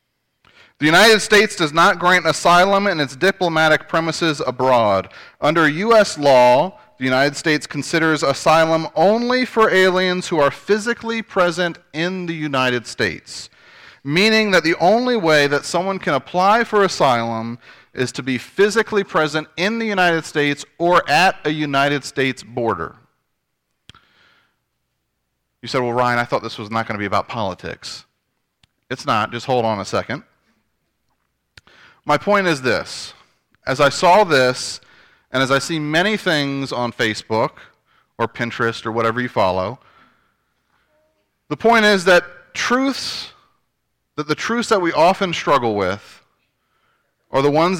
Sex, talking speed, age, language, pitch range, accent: male, 145 wpm, 30-49, English, 125-180 Hz, American